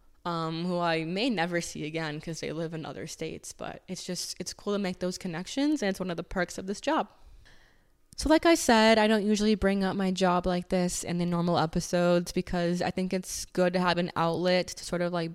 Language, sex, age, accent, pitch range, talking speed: English, female, 20-39, American, 165-185 Hz, 240 wpm